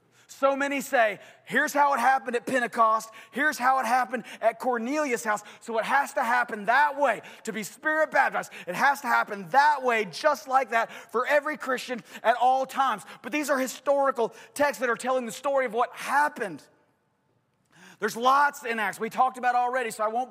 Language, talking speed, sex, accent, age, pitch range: English, 200 wpm, male, American, 30-49, 225-275 Hz